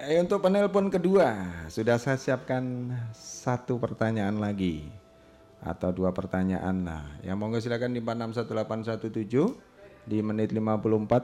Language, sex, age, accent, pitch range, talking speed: Indonesian, male, 30-49, native, 95-125 Hz, 105 wpm